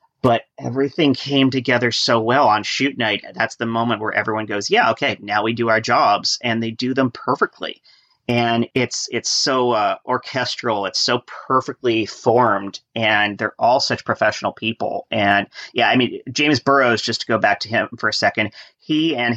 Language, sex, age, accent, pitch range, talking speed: English, male, 30-49, American, 105-130 Hz, 185 wpm